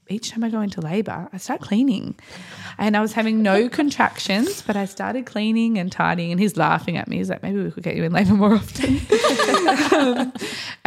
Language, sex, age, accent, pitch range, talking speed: English, female, 20-39, Australian, 160-215 Hz, 210 wpm